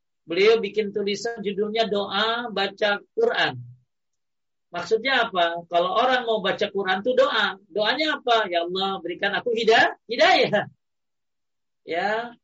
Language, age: Indonesian, 40-59